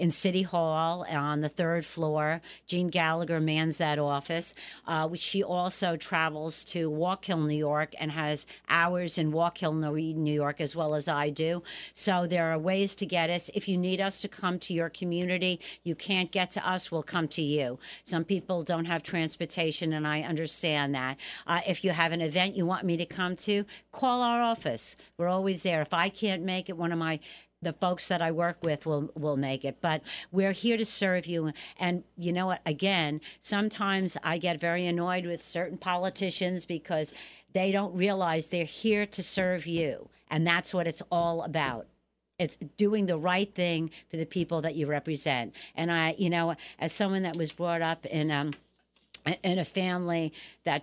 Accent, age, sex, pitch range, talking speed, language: American, 60-79, female, 160-180 Hz, 195 wpm, English